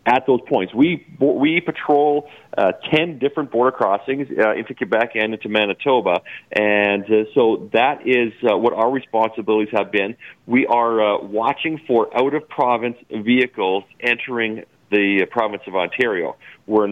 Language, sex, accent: English, male, American